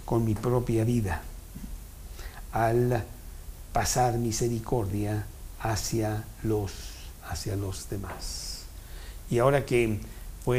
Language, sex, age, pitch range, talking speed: Spanish, male, 60-79, 95-120 Hz, 85 wpm